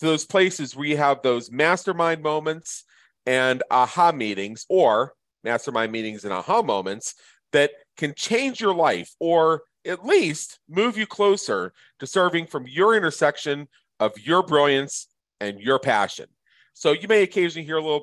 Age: 40-59